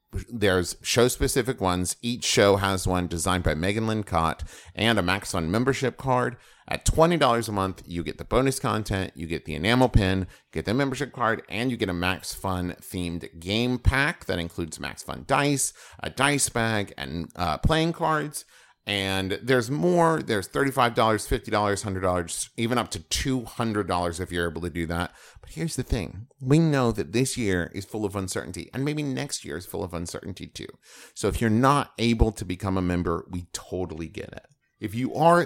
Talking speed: 180 wpm